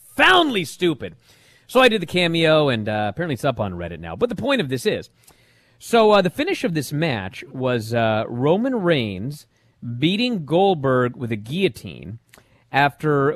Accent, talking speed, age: American, 170 wpm, 40-59